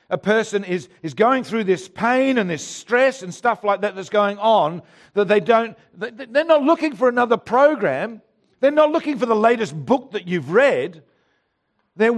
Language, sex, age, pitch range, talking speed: English, male, 50-69, 175-240 Hz, 185 wpm